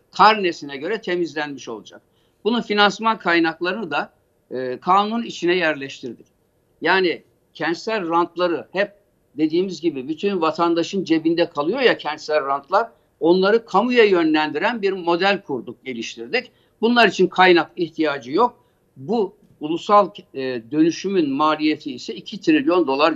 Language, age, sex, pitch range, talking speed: Turkish, 60-79, male, 155-205 Hz, 115 wpm